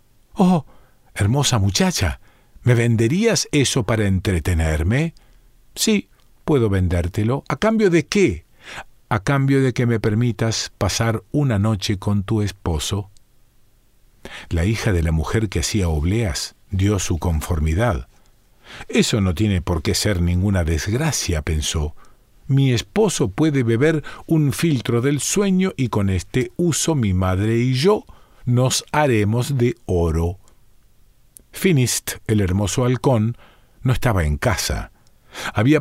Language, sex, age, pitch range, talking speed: Spanish, male, 50-69, 95-130 Hz, 125 wpm